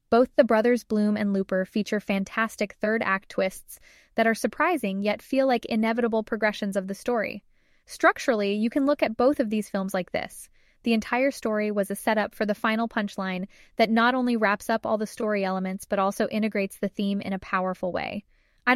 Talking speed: 195 wpm